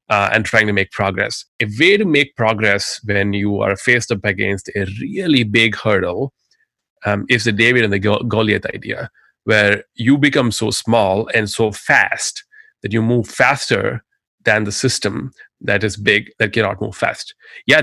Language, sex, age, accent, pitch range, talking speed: English, male, 30-49, Indian, 105-125 Hz, 175 wpm